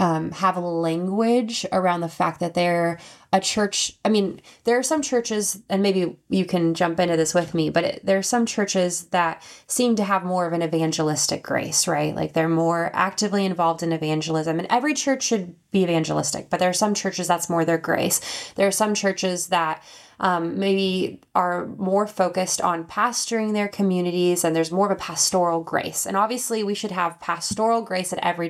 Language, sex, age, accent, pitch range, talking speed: English, female, 20-39, American, 170-200 Hz, 195 wpm